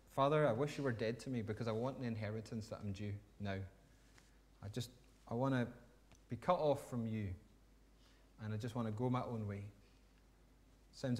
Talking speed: 200 wpm